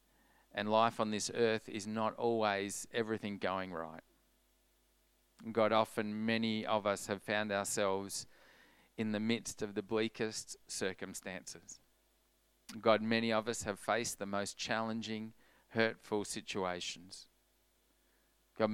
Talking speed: 120 wpm